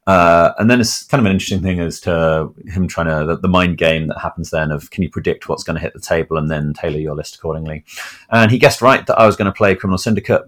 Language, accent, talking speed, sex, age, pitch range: English, British, 280 wpm, male, 30-49, 80-95 Hz